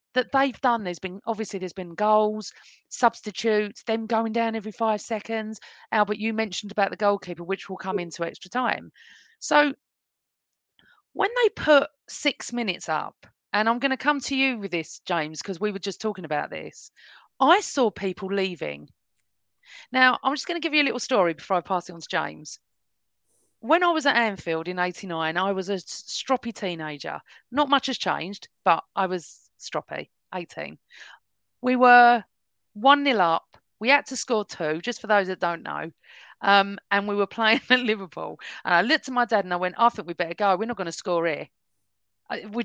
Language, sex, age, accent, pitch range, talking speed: English, female, 40-59, British, 180-240 Hz, 195 wpm